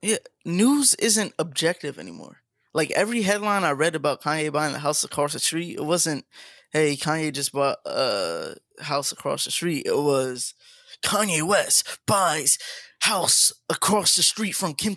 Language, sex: English, male